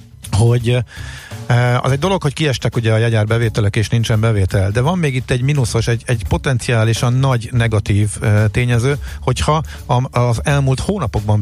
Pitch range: 105-130 Hz